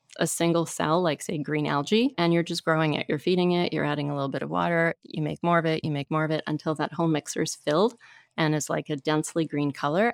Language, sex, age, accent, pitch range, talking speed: English, female, 30-49, American, 155-185 Hz, 265 wpm